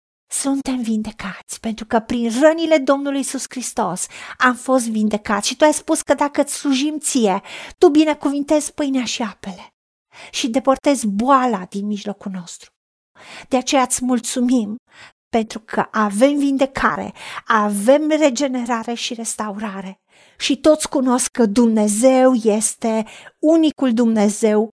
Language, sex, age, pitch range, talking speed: Romanian, female, 40-59, 210-270 Hz, 125 wpm